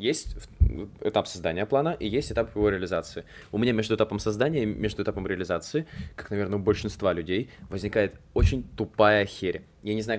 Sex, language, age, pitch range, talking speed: male, Russian, 20-39, 100-130 Hz, 175 wpm